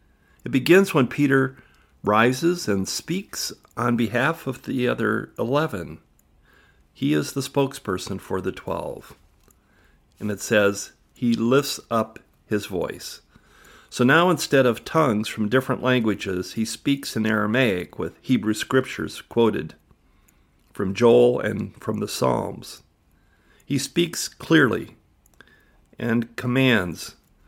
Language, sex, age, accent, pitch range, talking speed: English, male, 50-69, American, 100-130 Hz, 120 wpm